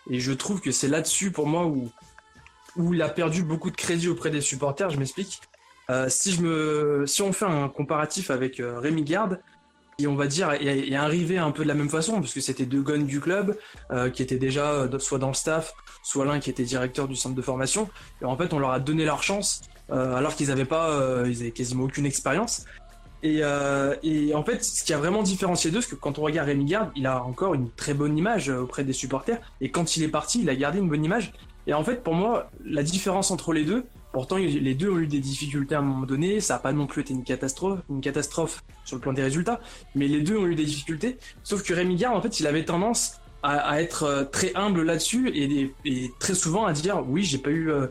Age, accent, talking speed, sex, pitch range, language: 20-39, French, 245 wpm, male, 135-180 Hz, French